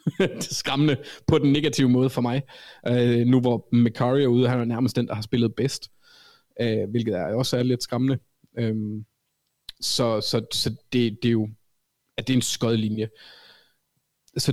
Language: Danish